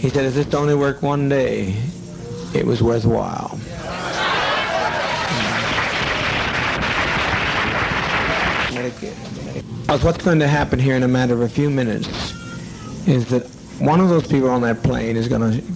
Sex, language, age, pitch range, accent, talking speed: male, English, 60-79, 115-135 Hz, American, 135 wpm